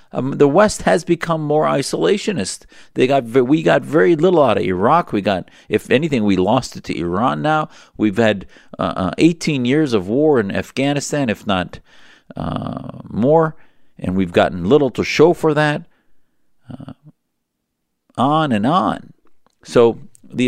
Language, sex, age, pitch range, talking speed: English, male, 50-69, 85-135 Hz, 155 wpm